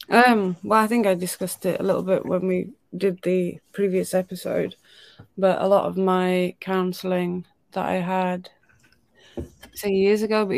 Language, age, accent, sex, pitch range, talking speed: English, 20-39, British, female, 175-185 Hz, 165 wpm